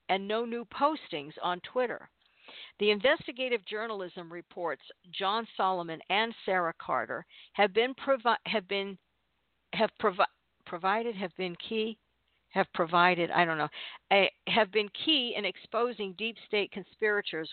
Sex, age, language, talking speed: female, 50-69, English, 135 wpm